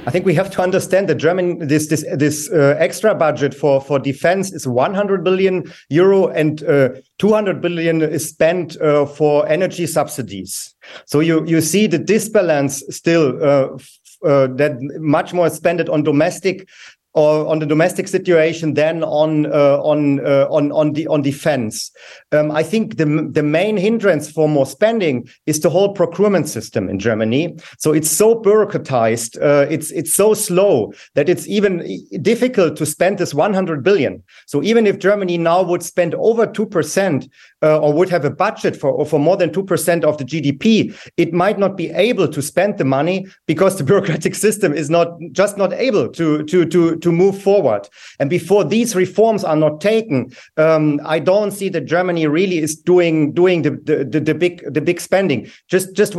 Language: English